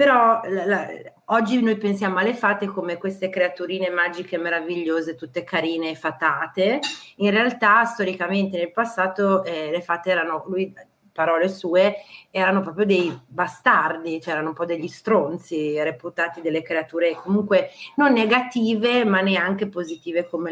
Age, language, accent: 40-59, Italian, native